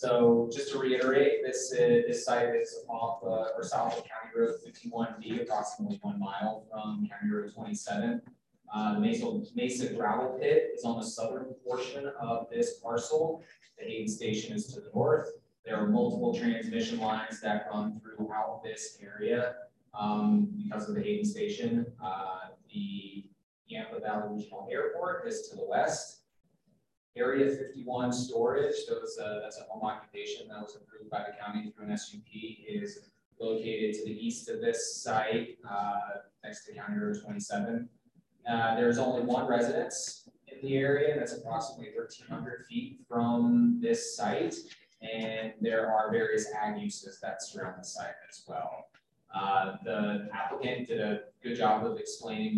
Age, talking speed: 20-39, 155 wpm